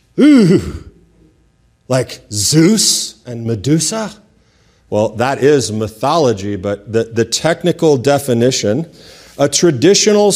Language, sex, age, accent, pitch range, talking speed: English, male, 40-59, American, 115-165 Hz, 95 wpm